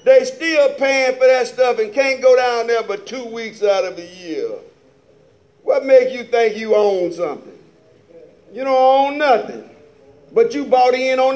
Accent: American